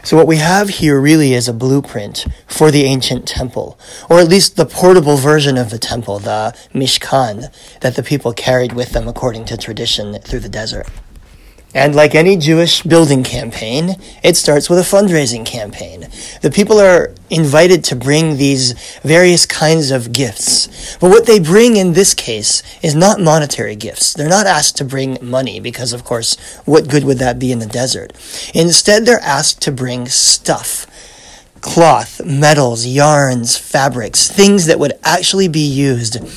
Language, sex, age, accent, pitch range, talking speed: English, male, 30-49, American, 125-160 Hz, 170 wpm